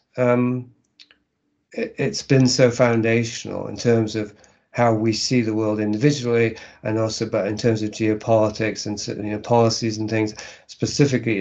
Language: English